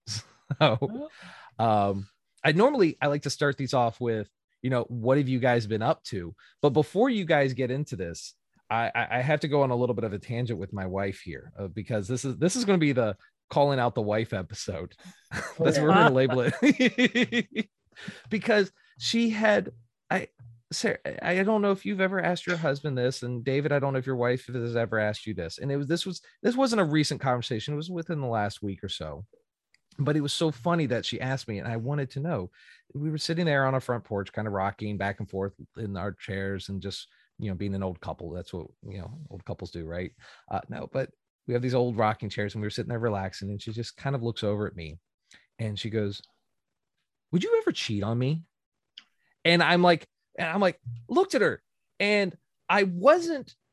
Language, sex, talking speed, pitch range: English, male, 225 wpm, 105-160 Hz